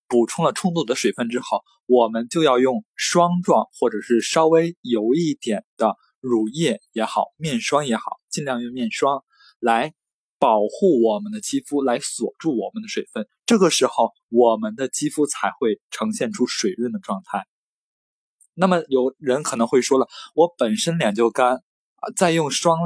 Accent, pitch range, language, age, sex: native, 120-195 Hz, Chinese, 20-39, male